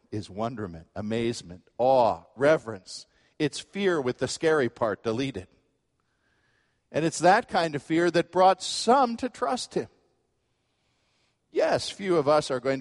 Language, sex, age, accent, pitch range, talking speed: English, male, 50-69, American, 115-170 Hz, 140 wpm